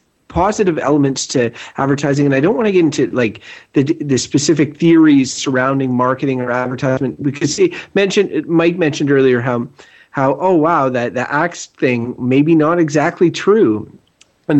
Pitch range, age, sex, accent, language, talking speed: 125-150 Hz, 30-49, male, American, English, 165 wpm